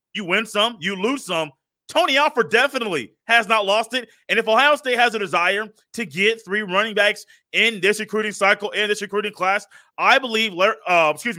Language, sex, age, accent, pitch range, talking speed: English, male, 30-49, American, 200-245 Hz, 195 wpm